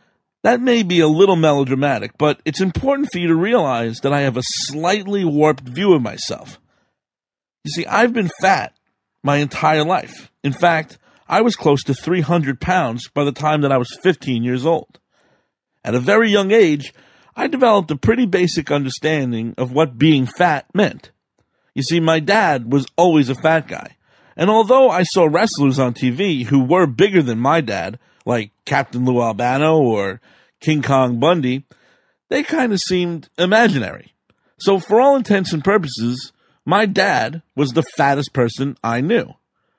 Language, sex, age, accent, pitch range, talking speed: English, male, 50-69, American, 135-185 Hz, 170 wpm